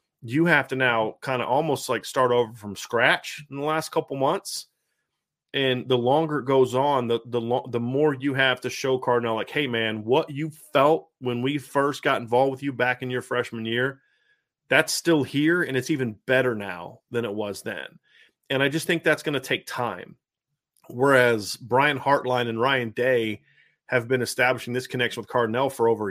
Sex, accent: male, American